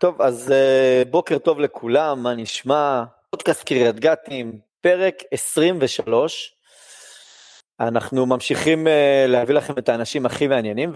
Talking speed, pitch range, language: 110 wpm, 115-160 Hz, Hebrew